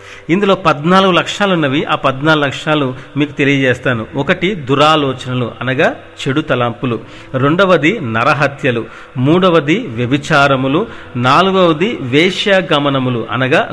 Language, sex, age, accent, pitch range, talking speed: Telugu, male, 40-59, native, 130-165 Hz, 90 wpm